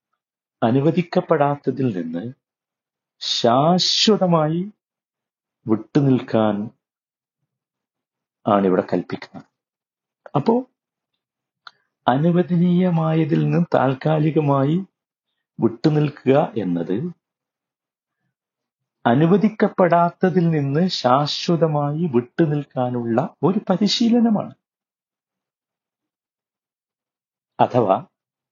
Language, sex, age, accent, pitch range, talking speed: Malayalam, male, 50-69, native, 115-170 Hz, 40 wpm